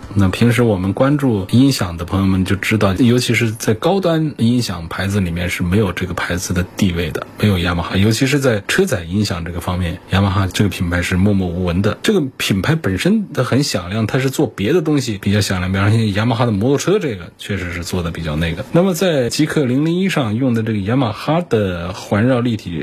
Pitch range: 95-120 Hz